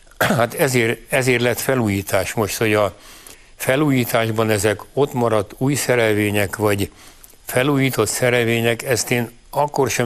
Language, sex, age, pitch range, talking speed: Hungarian, male, 60-79, 110-125 Hz, 125 wpm